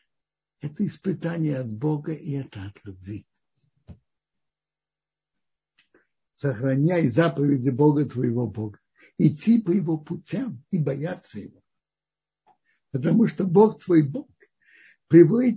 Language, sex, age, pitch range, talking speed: Russian, male, 60-79, 140-200 Hz, 100 wpm